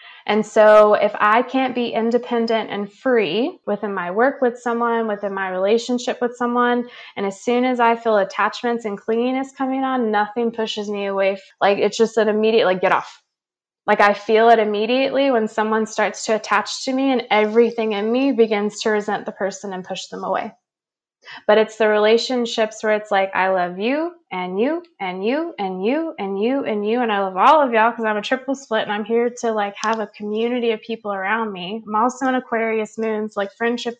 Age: 20-39